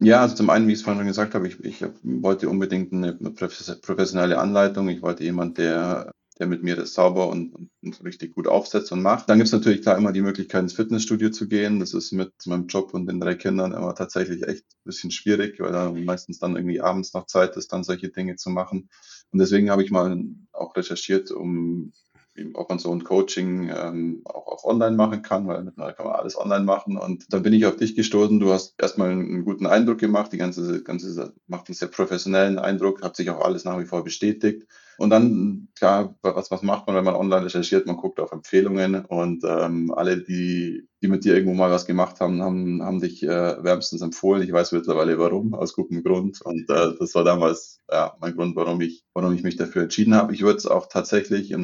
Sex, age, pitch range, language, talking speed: male, 20-39, 90-105 Hz, German, 225 wpm